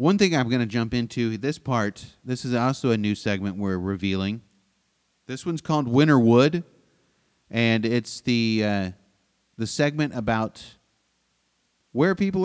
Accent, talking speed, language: American, 145 wpm, English